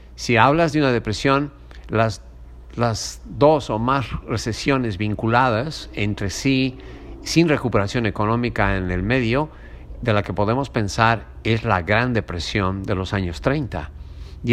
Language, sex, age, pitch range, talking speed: Spanish, male, 50-69, 90-130 Hz, 140 wpm